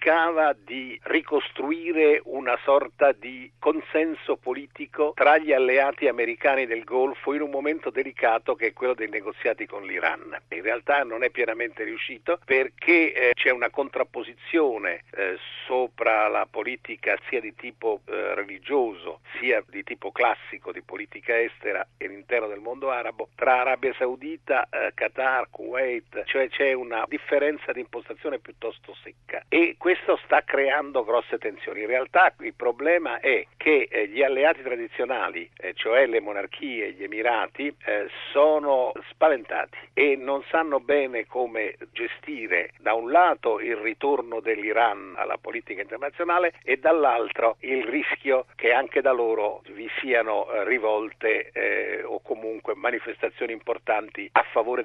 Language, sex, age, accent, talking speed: Italian, male, 50-69, native, 135 wpm